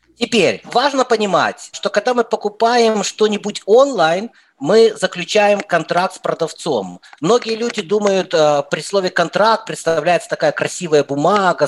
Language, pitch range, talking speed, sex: English, 160-210 Hz, 125 wpm, male